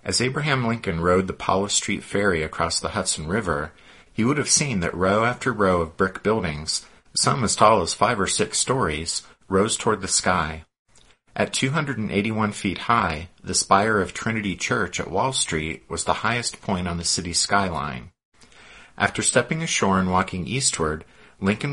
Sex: male